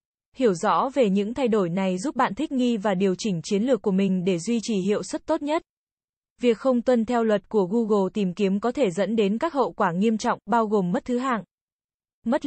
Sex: female